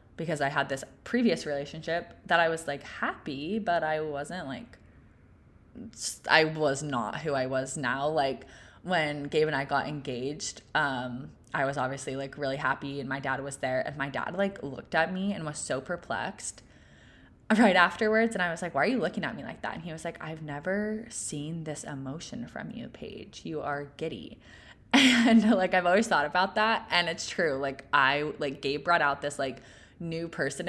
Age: 20-39